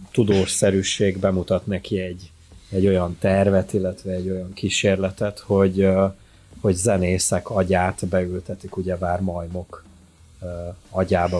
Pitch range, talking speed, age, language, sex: 90-105 Hz, 105 wpm, 30-49, Hungarian, male